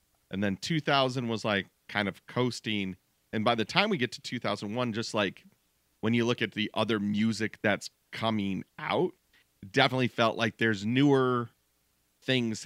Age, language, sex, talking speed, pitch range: 40-59, English, male, 165 wpm, 95-120 Hz